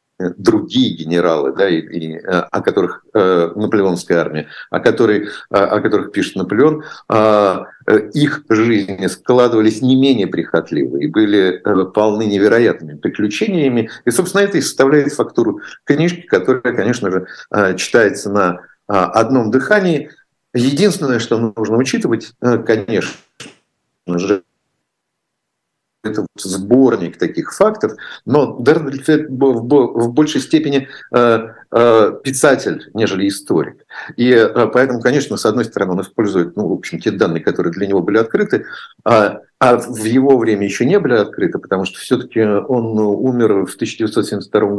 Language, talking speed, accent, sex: Russian, 120 wpm, native, male